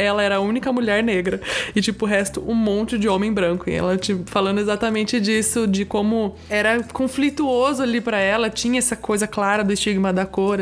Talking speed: 205 wpm